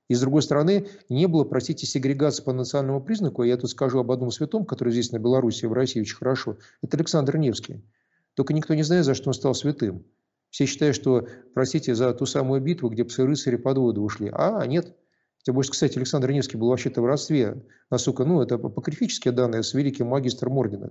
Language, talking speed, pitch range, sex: Russian, 205 wpm, 120-150 Hz, male